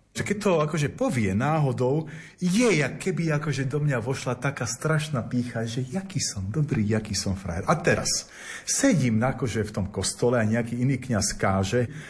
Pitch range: 105-140 Hz